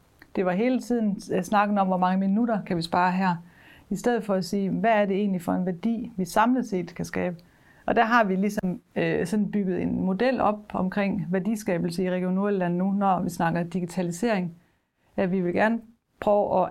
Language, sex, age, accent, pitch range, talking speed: Danish, female, 40-59, native, 175-210 Hz, 210 wpm